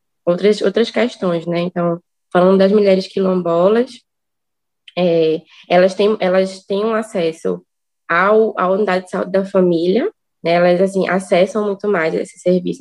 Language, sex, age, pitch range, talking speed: Portuguese, female, 20-39, 170-195 Hz, 145 wpm